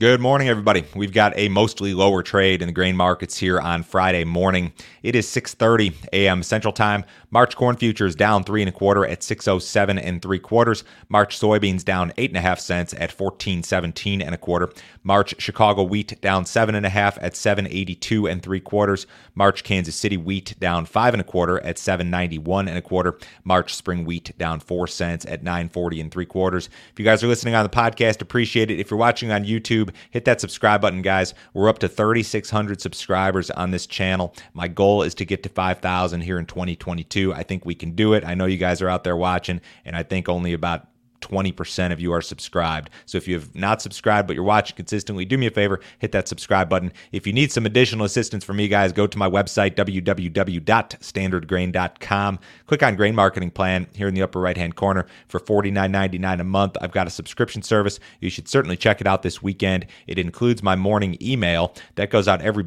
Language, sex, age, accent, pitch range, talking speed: English, male, 30-49, American, 90-105 Hz, 210 wpm